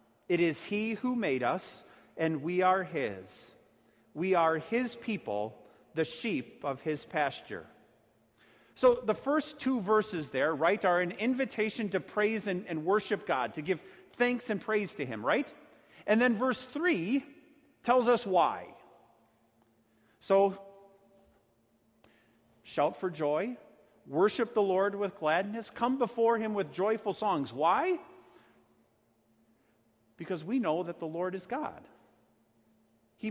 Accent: American